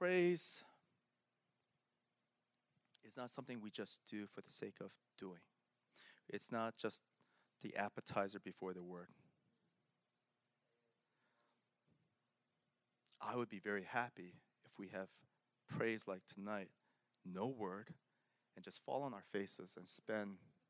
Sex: male